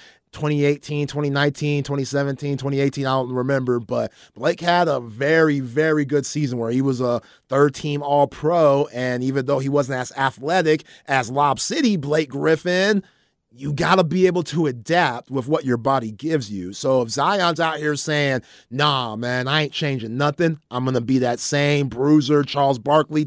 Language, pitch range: English, 140-175 Hz